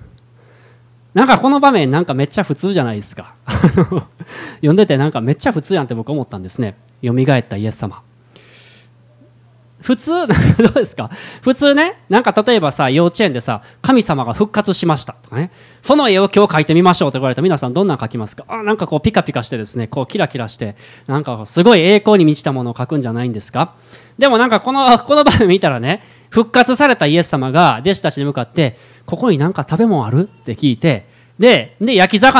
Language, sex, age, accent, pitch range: Japanese, male, 20-39, native, 125-210 Hz